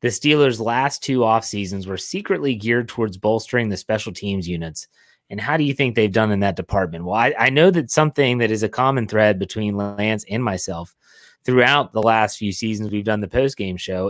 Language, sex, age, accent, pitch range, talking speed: English, male, 30-49, American, 110-135 Hz, 210 wpm